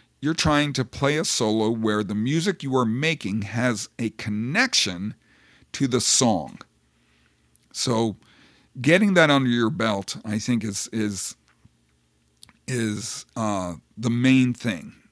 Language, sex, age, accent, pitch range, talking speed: English, male, 50-69, American, 110-140 Hz, 130 wpm